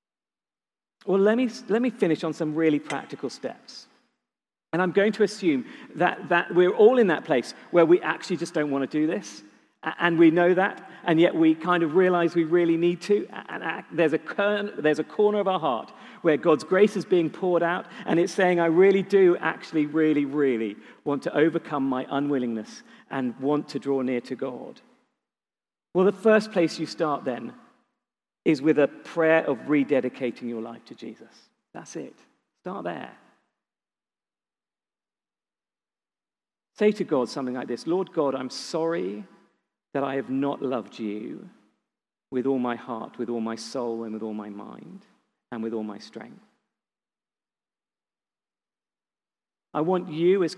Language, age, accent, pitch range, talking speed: English, 40-59, British, 130-185 Hz, 170 wpm